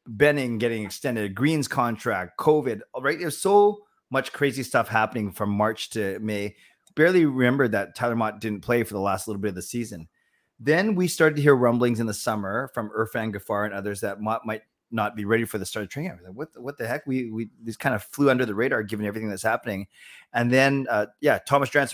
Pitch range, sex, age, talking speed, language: 105-135 Hz, male, 30-49, 225 wpm, English